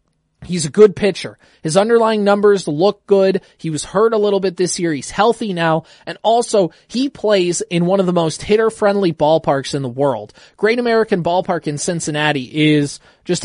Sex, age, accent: male, 20-39, American